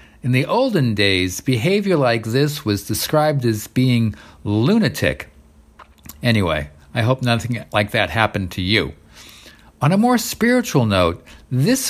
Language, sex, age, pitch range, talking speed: English, male, 50-69, 100-145 Hz, 135 wpm